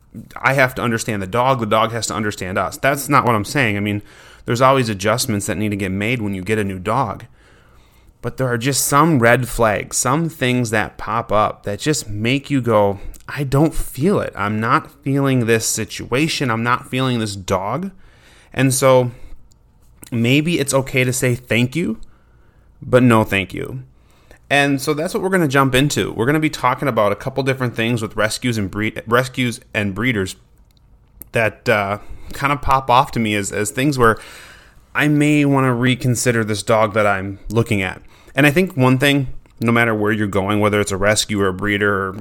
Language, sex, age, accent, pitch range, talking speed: English, male, 30-49, American, 105-135 Hz, 205 wpm